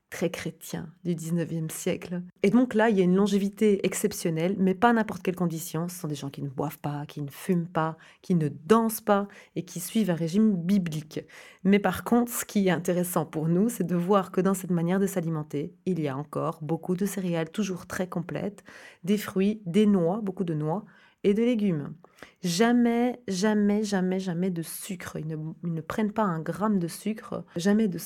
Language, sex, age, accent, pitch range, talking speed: French, female, 30-49, French, 165-210 Hz, 210 wpm